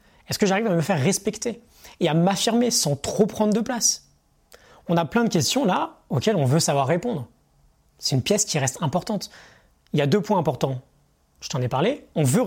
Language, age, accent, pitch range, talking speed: French, 20-39, French, 135-200 Hz, 210 wpm